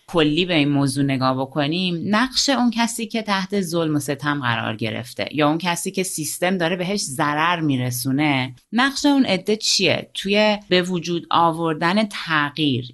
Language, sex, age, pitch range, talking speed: Persian, female, 30-49, 145-215 Hz, 155 wpm